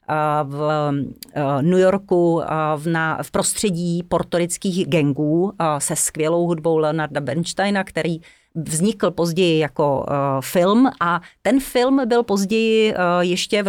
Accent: native